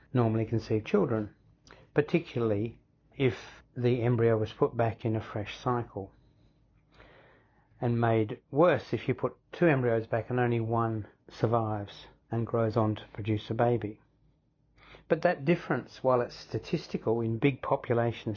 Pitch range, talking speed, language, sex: 110-130 Hz, 140 wpm, English, male